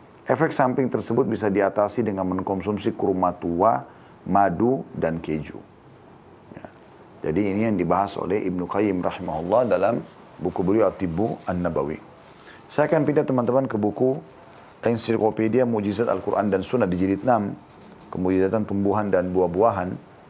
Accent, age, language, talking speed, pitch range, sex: native, 40-59, Indonesian, 130 wpm, 95-115 Hz, male